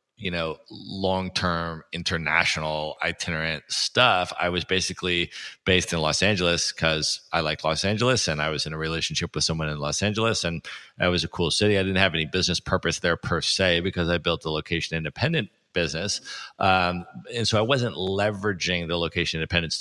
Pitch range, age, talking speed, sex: 80-95 Hz, 40-59, 185 wpm, male